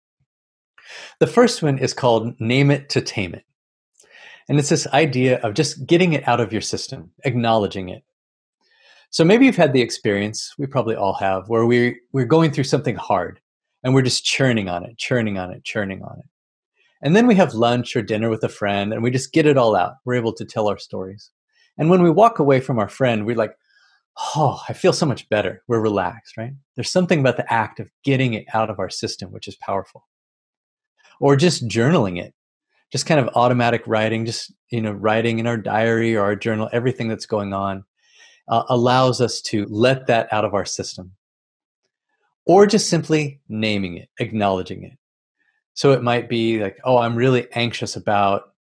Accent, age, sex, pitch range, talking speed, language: American, 30-49, male, 105-130 Hz, 195 wpm, English